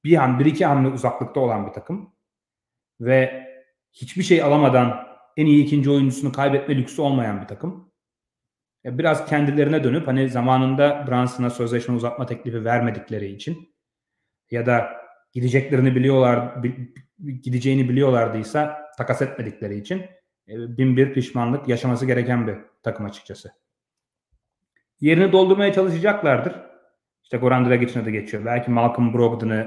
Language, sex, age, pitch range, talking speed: Turkish, male, 30-49, 120-145 Hz, 125 wpm